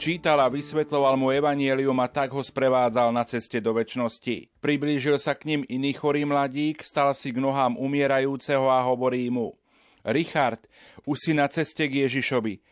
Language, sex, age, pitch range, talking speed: Slovak, male, 40-59, 125-145 Hz, 165 wpm